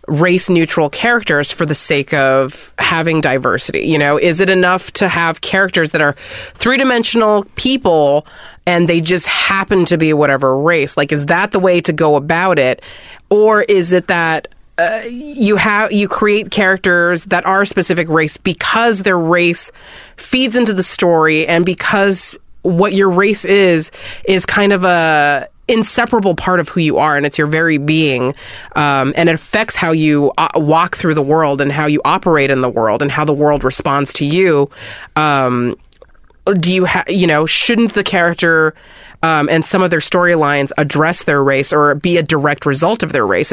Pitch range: 150-190 Hz